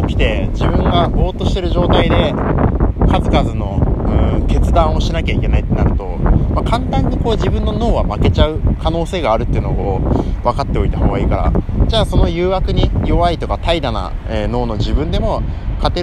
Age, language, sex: 20-39, Japanese, male